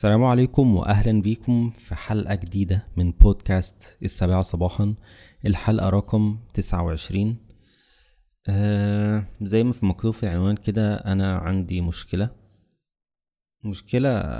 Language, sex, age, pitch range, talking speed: Arabic, male, 20-39, 90-105 Hz, 110 wpm